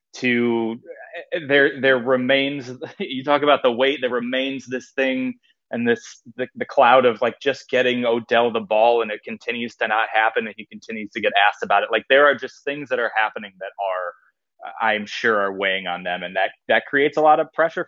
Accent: American